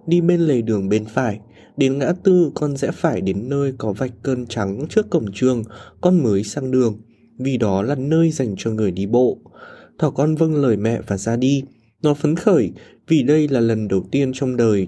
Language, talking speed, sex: Vietnamese, 215 wpm, male